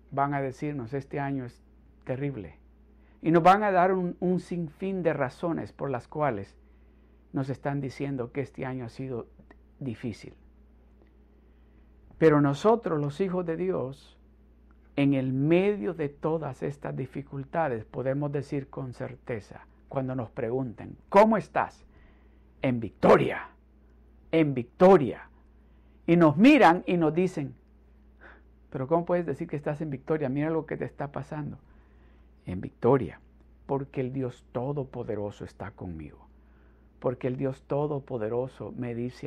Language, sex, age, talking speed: Spanish, male, 60-79, 135 wpm